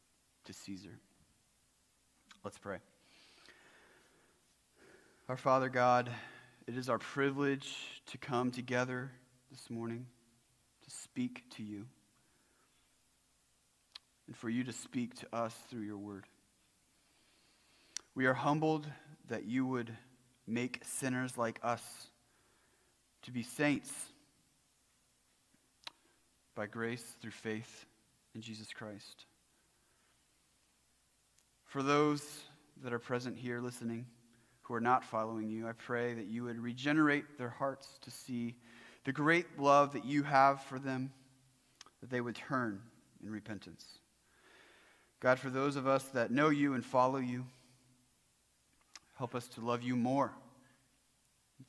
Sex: male